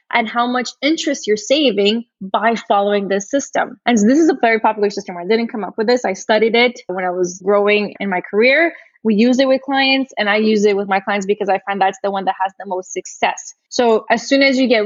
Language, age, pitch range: English, 20-39, 205-240 Hz